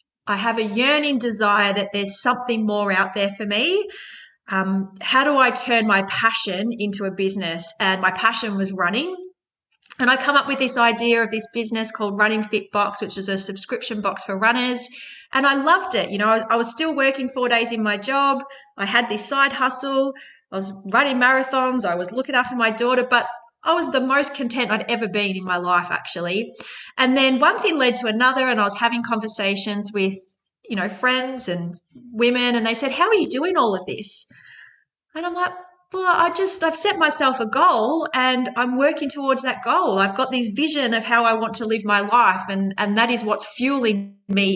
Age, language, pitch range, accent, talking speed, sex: 30-49, English, 205-265 Hz, Australian, 215 wpm, female